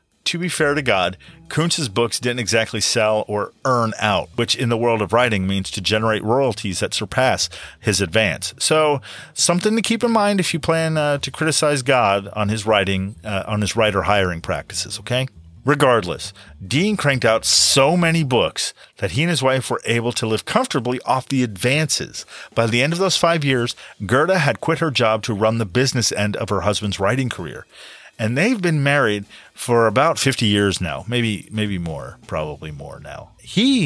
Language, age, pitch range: English, 40-59, 100-135 Hz